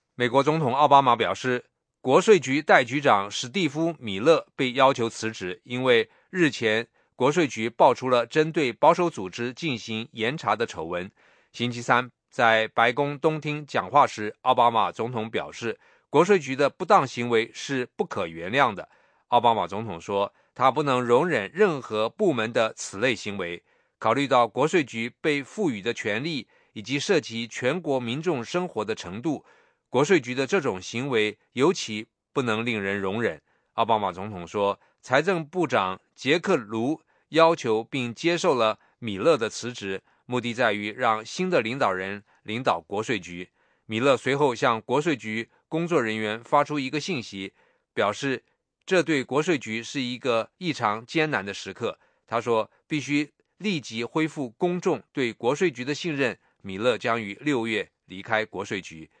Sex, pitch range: male, 110-150 Hz